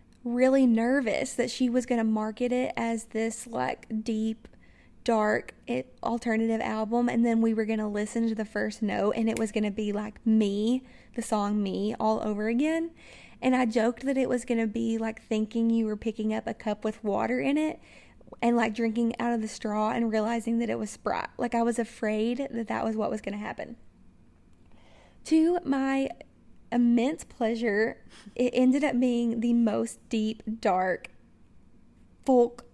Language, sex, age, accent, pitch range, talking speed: English, female, 20-39, American, 220-250 Hz, 185 wpm